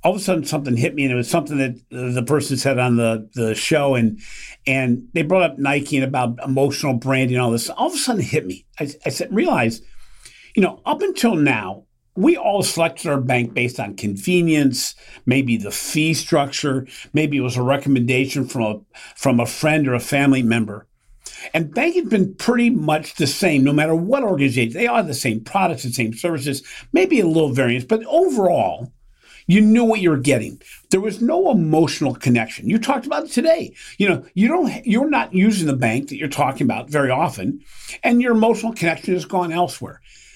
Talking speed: 205 wpm